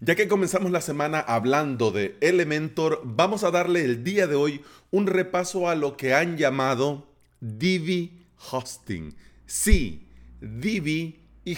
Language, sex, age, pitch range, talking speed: Spanish, male, 40-59, 125-180 Hz, 140 wpm